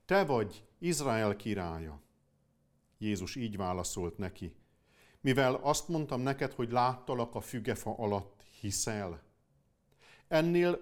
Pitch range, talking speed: 105-150 Hz, 105 wpm